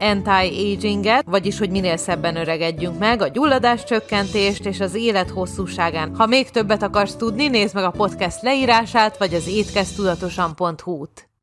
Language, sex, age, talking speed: Hungarian, female, 30-49, 140 wpm